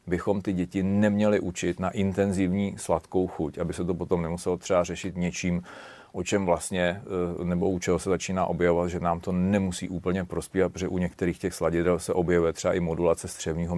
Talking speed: 185 wpm